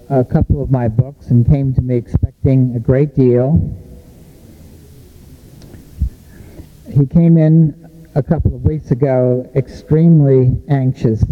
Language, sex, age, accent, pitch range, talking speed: German, male, 60-79, American, 125-150 Hz, 120 wpm